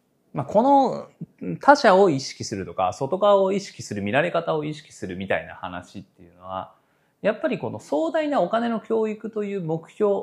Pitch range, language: 130-205 Hz, Japanese